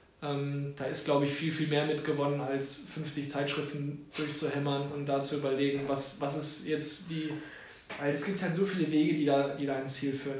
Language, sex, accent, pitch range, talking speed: German, male, German, 140-160 Hz, 200 wpm